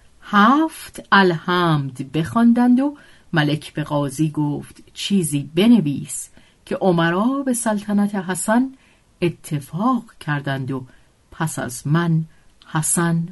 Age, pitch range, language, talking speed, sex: 50-69, 150-205 Hz, Persian, 100 wpm, female